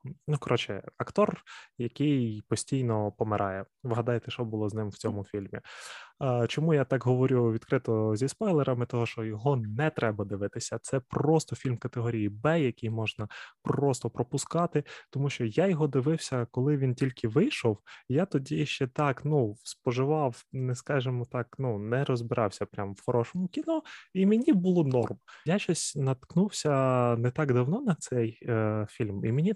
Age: 20-39